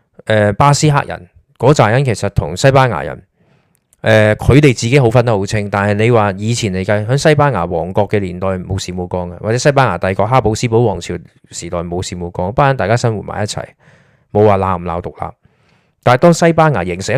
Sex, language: male, Chinese